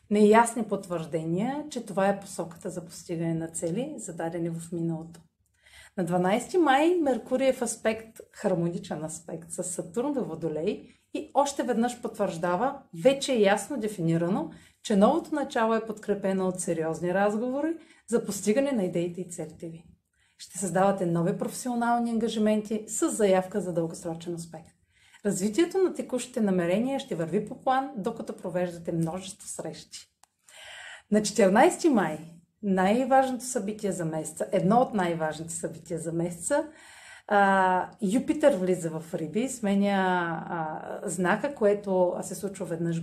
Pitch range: 175-245 Hz